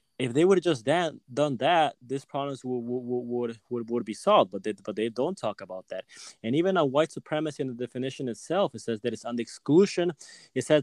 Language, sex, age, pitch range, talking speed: English, male, 20-39, 115-150 Hz, 235 wpm